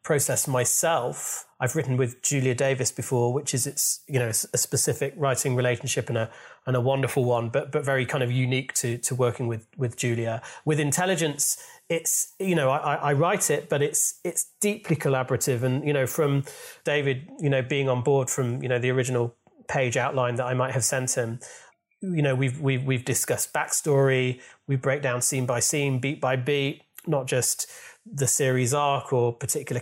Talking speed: 190 wpm